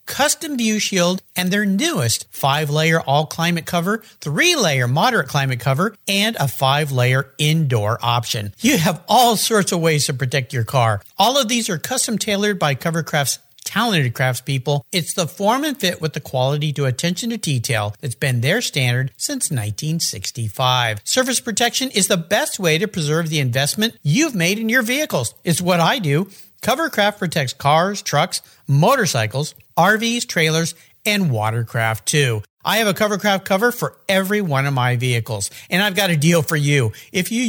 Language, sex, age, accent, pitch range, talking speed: English, male, 50-69, American, 135-210 Hz, 170 wpm